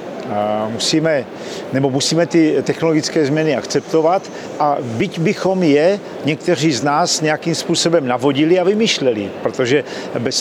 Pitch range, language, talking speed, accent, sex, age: 135-170 Hz, Czech, 115 wpm, native, male, 50-69